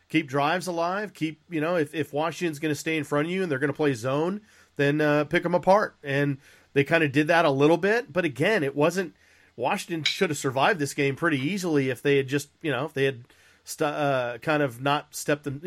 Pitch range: 130-160 Hz